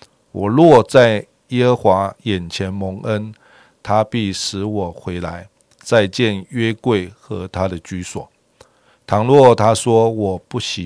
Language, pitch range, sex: Chinese, 95-115 Hz, male